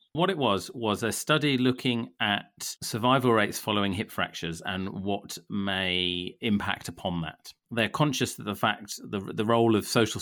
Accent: British